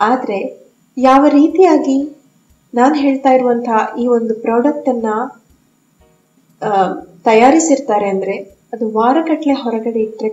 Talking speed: 100 wpm